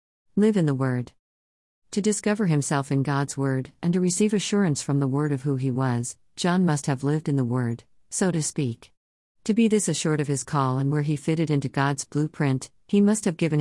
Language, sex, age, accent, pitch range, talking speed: English, female, 50-69, American, 130-170 Hz, 215 wpm